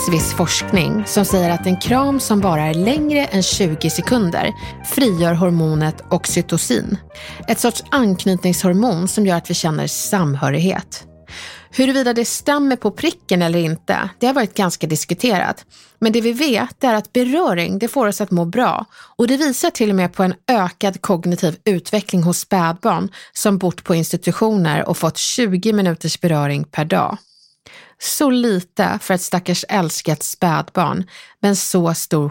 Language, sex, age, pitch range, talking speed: English, female, 30-49, 170-235 Hz, 155 wpm